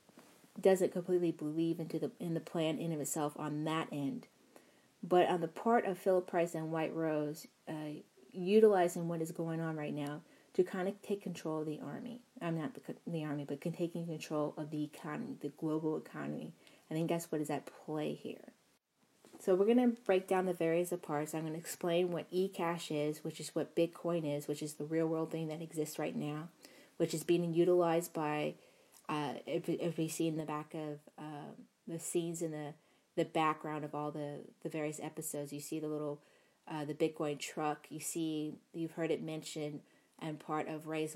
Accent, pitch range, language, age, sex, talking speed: American, 150-175 Hz, English, 30-49, female, 195 wpm